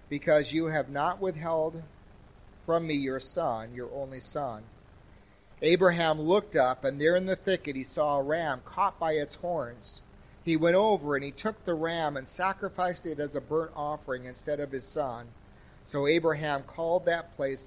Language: English